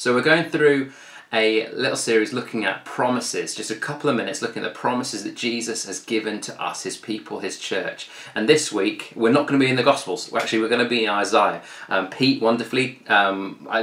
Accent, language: British, English